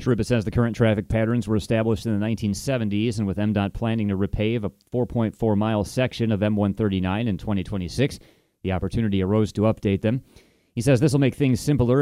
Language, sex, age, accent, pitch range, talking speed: English, male, 30-49, American, 100-120 Hz, 185 wpm